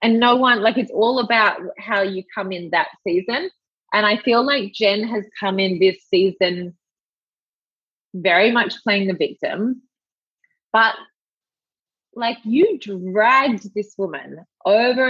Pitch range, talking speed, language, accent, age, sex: 190-240 Hz, 140 wpm, English, Australian, 20-39, female